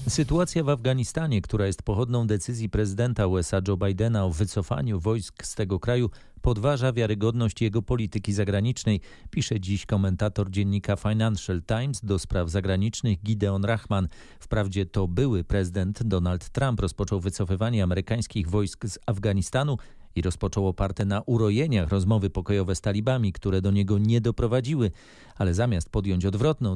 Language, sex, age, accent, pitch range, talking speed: Polish, male, 40-59, native, 95-120 Hz, 140 wpm